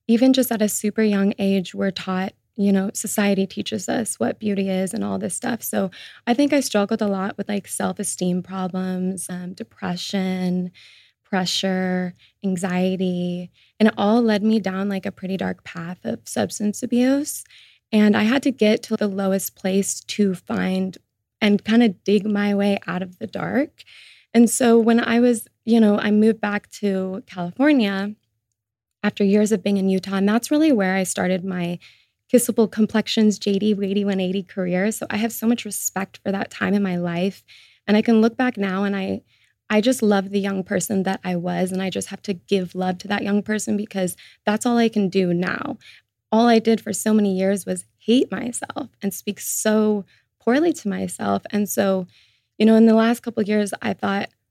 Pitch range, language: 185-220 Hz, English